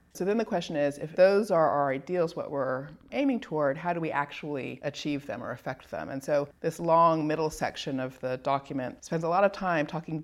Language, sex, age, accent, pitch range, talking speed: English, female, 30-49, American, 145-175 Hz, 225 wpm